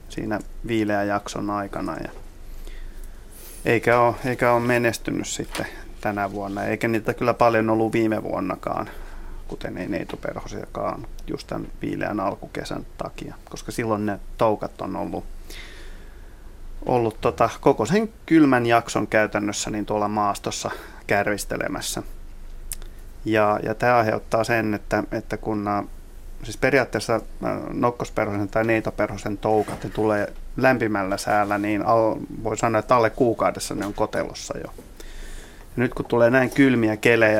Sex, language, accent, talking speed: male, Finnish, native, 130 wpm